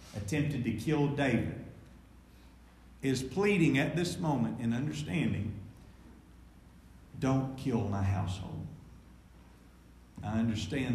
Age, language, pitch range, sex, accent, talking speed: 40-59, English, 100-145 Hz, male, American, 95 wpm